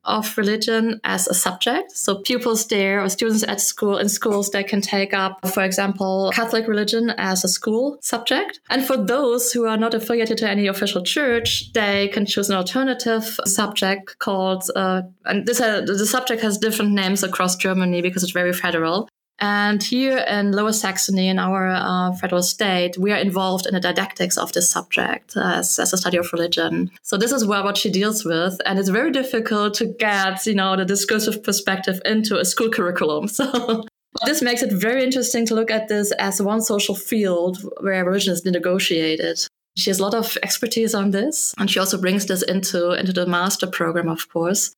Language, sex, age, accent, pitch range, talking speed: English, female, 20-39, German, 190-225 Hz, 195 wpm